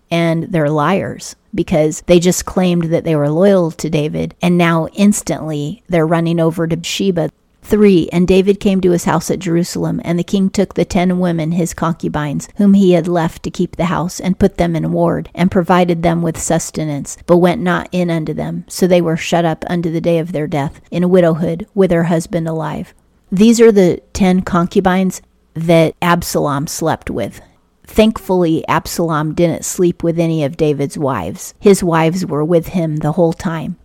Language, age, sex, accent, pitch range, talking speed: English, 40-59, female, American, 160-180 Hz, 190 wpm